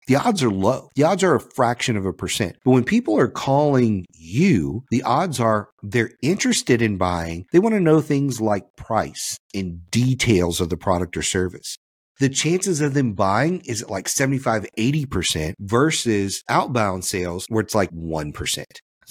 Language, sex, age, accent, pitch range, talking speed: English, male, 50-69, American, 100-130 Hz, 175 wpm